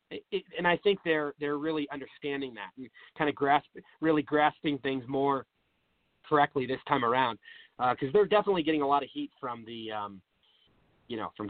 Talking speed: 190 wpm